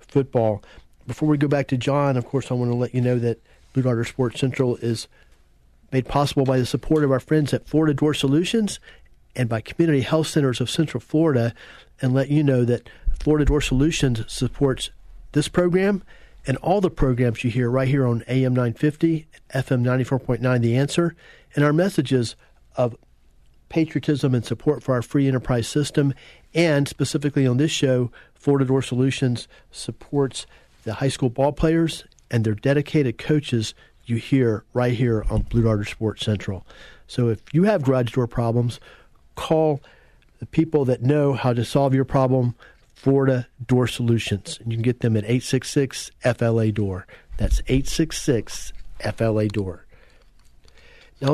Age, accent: 40-59, American